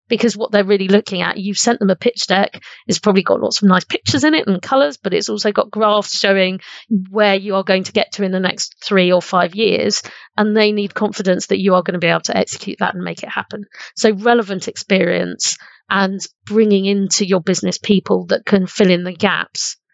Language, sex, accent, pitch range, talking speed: English, female, British, 185-215 Hz, 230 wpm